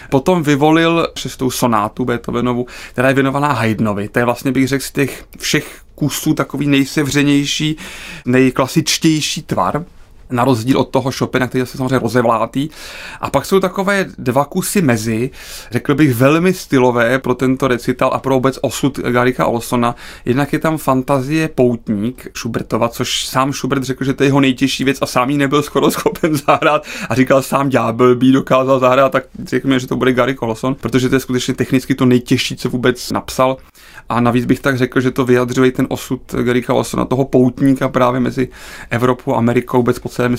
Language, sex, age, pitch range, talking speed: Czech, male, 30-49, 125-140 Hz, 185 wpm